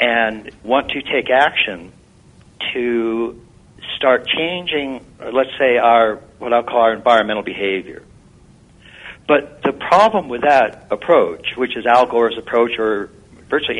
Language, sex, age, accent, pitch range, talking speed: English, male, 60-79, American, 110-145 Hz, 130 wpm